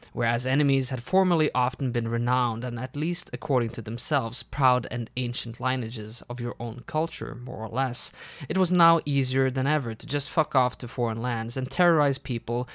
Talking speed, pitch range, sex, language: 190 wpm, 120-150 Hz, male, English